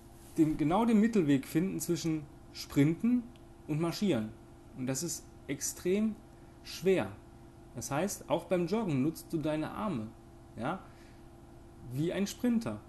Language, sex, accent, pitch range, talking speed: German, male, German, 125-170 Hz, 115 wpm